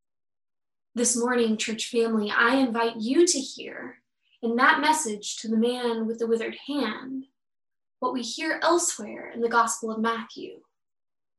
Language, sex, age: English, female, 20-39